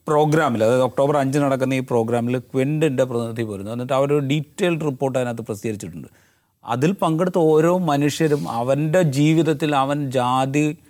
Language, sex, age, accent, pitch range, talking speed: English, male, 30-49, Indian, 120-155 Hz, 200 wpm